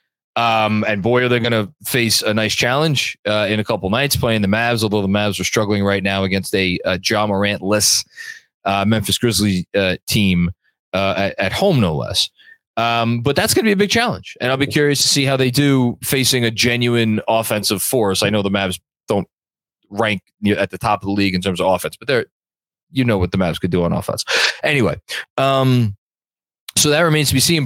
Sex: male